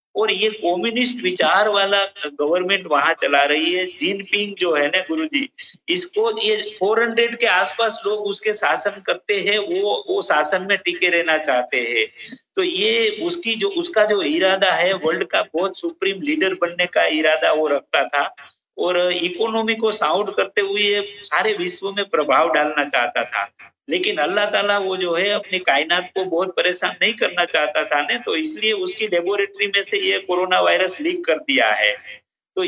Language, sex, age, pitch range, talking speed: Urdu, male, 50-69, 180-300 Hz, 140 wpm